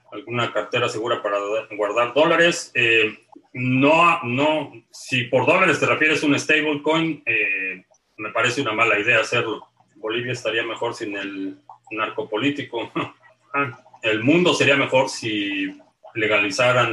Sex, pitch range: male, 115-145 Hz